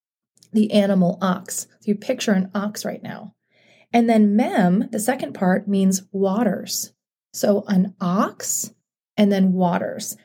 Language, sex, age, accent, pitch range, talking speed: English, female, 30-49, American, 190-225 Hz, 135 wpm